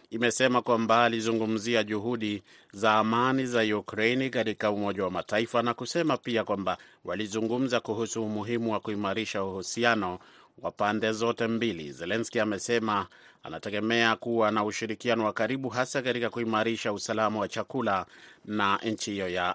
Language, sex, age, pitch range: Swahili, male, 30-49, 105-120 Hz